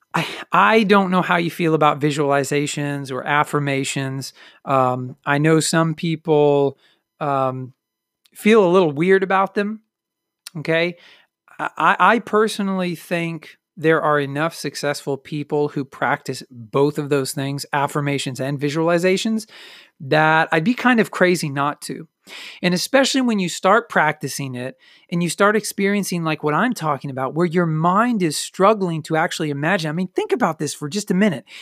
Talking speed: 160 wpm